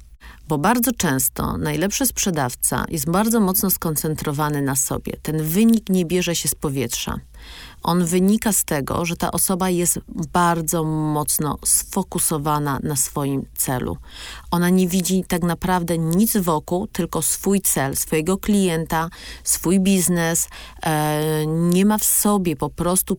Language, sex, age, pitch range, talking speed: Polish, female, 40-59, 155-205 Hz, 135 wpm